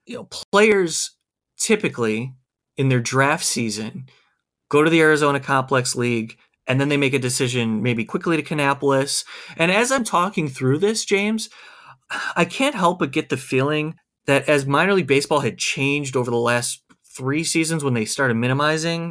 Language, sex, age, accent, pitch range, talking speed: English, male, 30-49, American, 130-175 Hz, 170 wpm